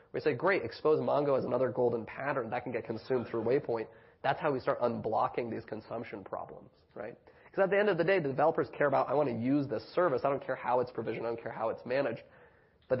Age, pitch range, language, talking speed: 30-49, 120-145 Hz, English, 250 wpm